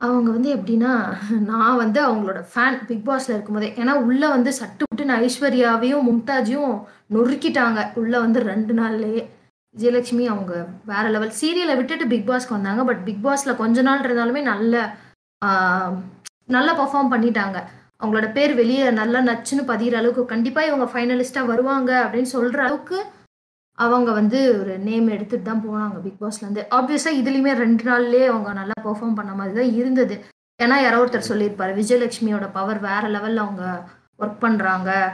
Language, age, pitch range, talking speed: Tamil, 20-39, 210-250 Hz, 140 wpm